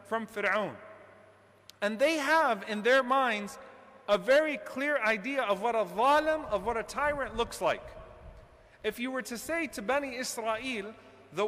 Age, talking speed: 40-59, 160 wpm